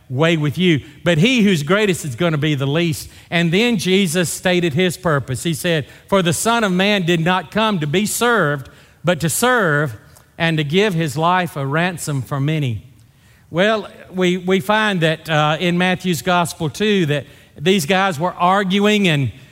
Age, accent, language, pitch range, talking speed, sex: 40-59, American, English, 135-185 Hz, 185 wpm, male